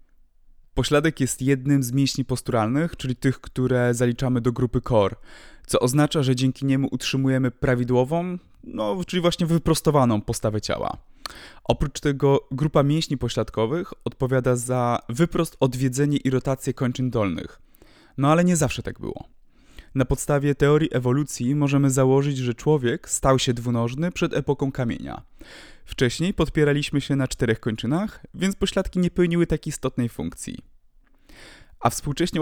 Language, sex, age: Polish, male, 20-39